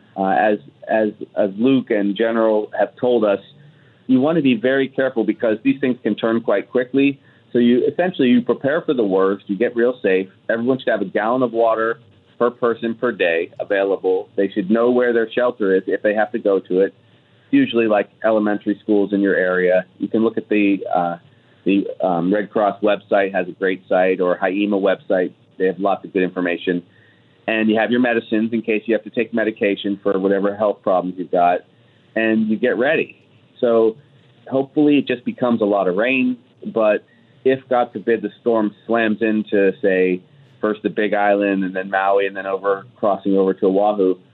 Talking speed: 200 wpm